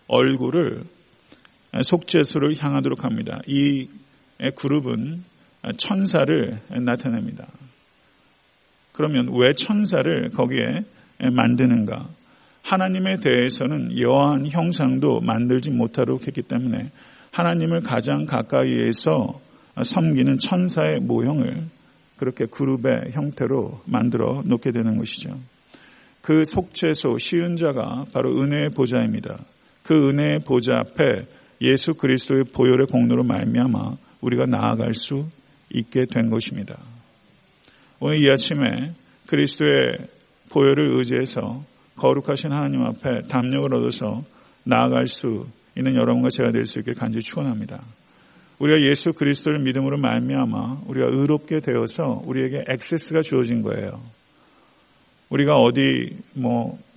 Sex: male